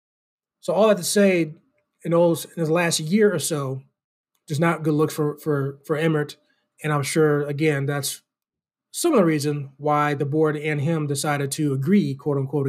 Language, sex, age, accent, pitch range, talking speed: English, male, 20-39, American, 145-170 Hz, 180 wpm